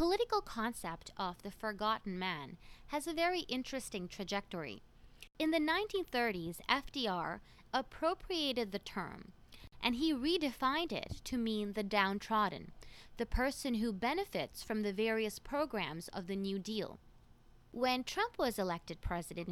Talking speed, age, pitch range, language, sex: 135 wpm, 20-39, 190-245 Hz, English, female